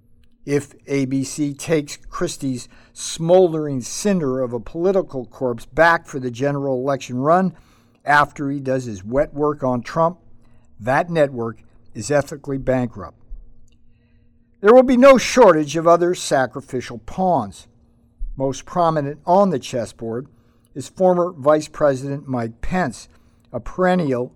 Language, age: English, 50-69